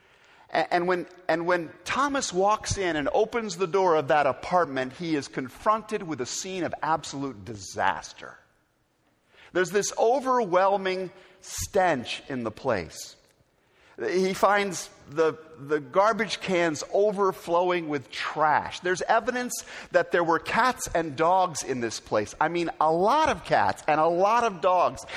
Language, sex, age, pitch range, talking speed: English, male, 50-69, 150-205 Hz, 145 wpm